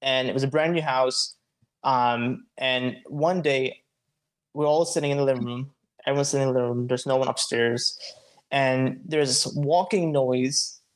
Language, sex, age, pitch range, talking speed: English, male, 20-39, 130-160 Hz, 180 wpm